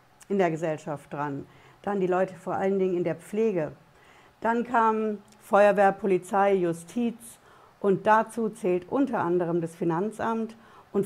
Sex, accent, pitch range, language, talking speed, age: female, German, 170-220 Hz, German, 140 wpm, 60-79